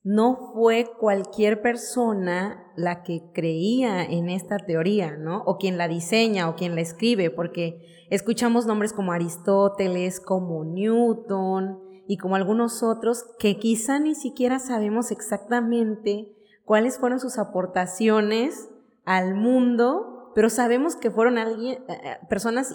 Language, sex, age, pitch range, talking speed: Spanish, female, 30-49, 180-215 Hz, 125 wpm